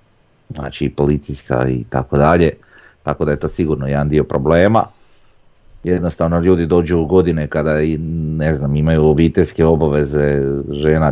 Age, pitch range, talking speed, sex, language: 40-59, 75-90 Hz, 130 wpm, male, Croatian